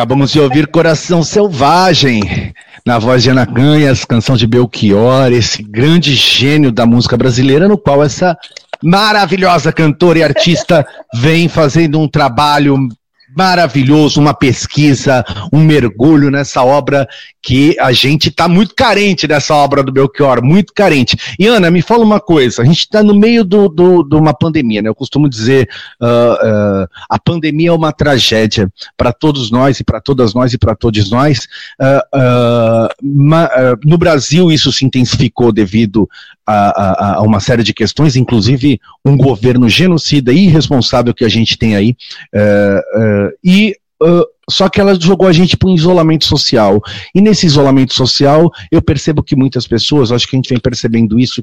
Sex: male